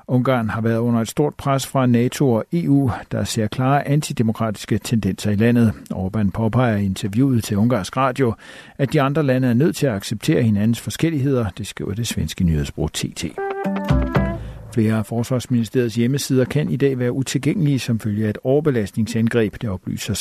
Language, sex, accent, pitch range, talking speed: Danish, male, native, 110-130 Hz, 170 wpm